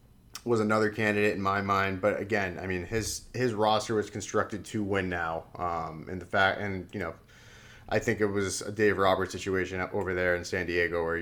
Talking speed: 210 wpm